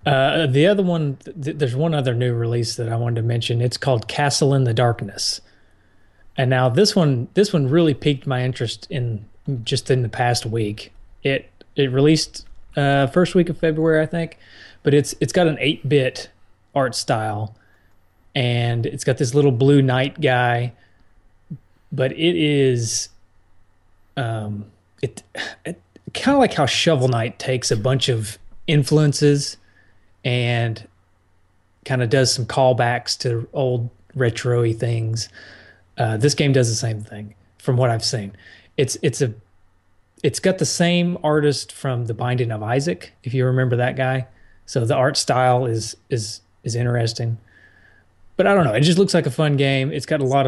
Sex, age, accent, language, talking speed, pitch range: male, 30-49, American, English, 170 wpm, 105-140 Hz